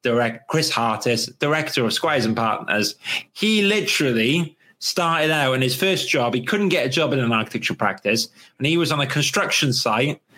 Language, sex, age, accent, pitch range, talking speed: English, male, 30-49, British, 115-165 Hz, 185 wpm